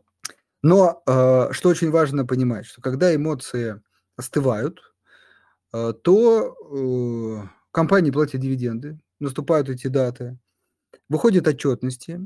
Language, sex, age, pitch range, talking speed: Russian, male, 30-49, 115-160 Hz, 90 wpm